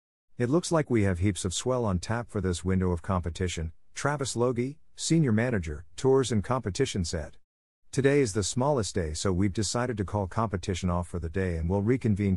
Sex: male